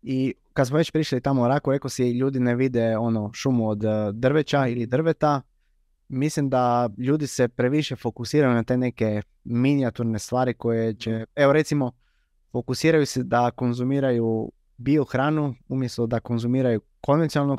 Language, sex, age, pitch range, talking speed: Croatian, male, 20-39, 115-130 Hz, 145 wpm